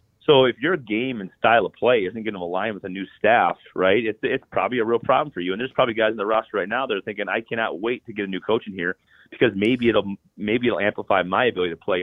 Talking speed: 285 wpm